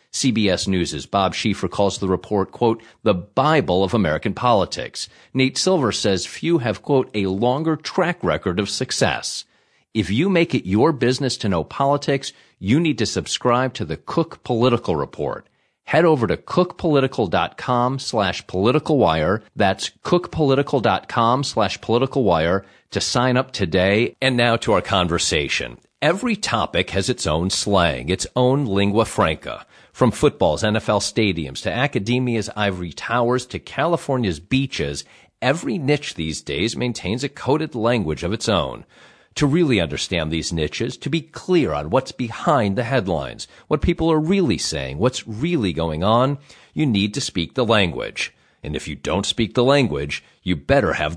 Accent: American